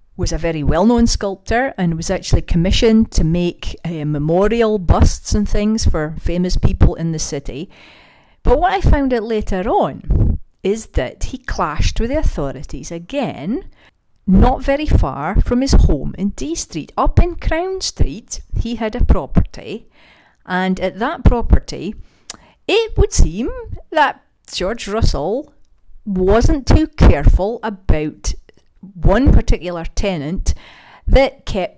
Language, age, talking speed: English, 40-59, 140 wpm